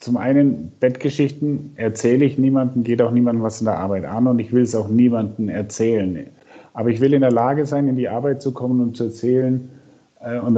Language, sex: German, male